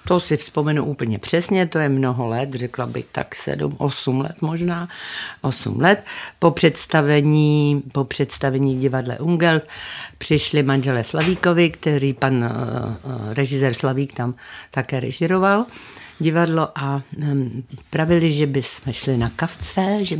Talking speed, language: 135 wpm, Czech